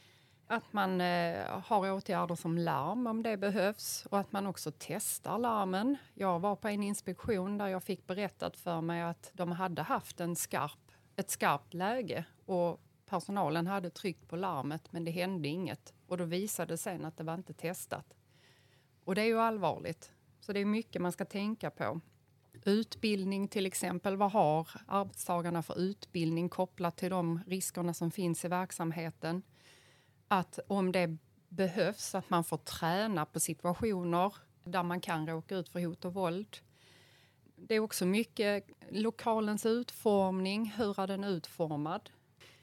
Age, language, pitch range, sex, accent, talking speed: 30-49, Swedish, 165-200 Hz, female, native, 160 wpm